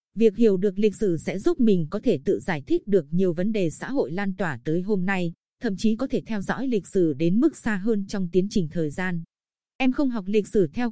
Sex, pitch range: female, 185-230 Hz